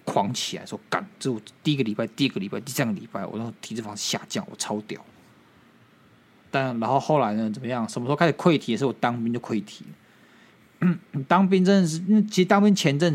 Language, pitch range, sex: Chinese, 120-180 Hz, male